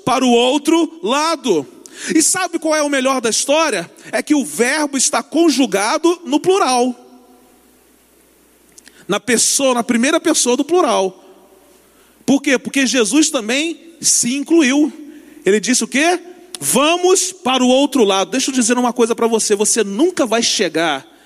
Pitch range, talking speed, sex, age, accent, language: 245-335 Hz, 150 wpm, male, 40-59, Brazilian, Portuguese